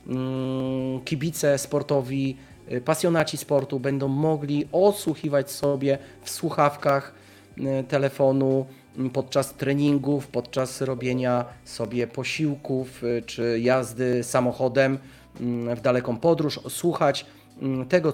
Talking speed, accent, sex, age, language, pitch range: 85 wpm, native, male, 30-49, Polish, 130-150 Hz